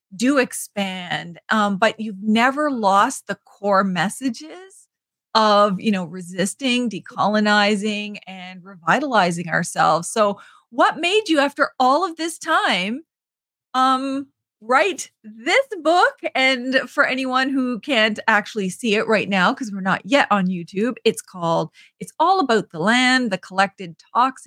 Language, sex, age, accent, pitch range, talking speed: English, female, 30-49, American, 190-270 Hz, 140 wpm